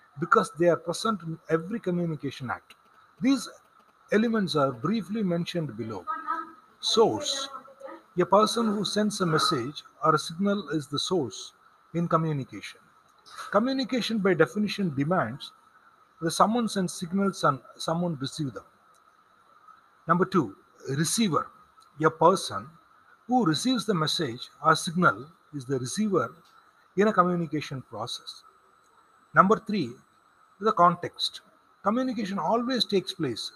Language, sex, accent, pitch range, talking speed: Tamil, male, native, 165-255 Hz, 120 wpm